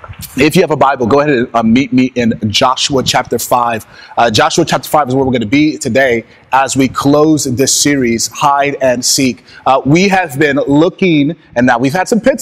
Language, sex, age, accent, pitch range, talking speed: English, male, 30-49, American, 140-190 Hz, 215 wpm